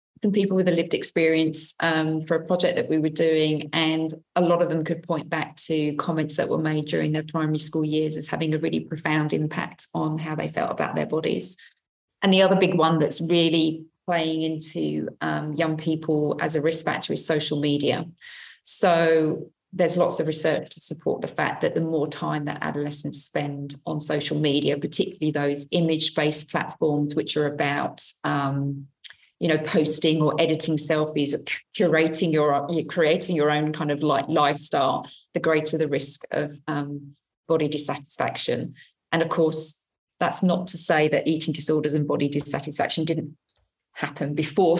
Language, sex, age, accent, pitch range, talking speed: English, female, 30-49, British, 145-160 Hz, 175 wpm